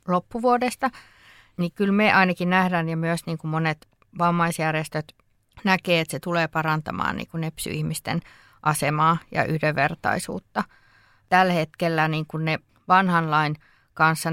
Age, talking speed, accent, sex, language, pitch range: 20-39, 125 wpm, native, female, Finnish, 150-175 Hz